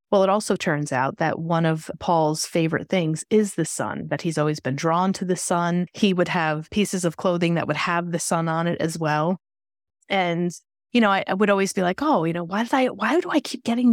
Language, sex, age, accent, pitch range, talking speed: English, female, 30-49, American, 160-200 Hz, 245 wpm